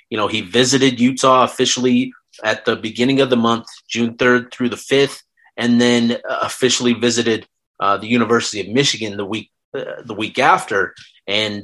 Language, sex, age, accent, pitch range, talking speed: English, male, 30-49, American, 110-130 Hz, 170 wpm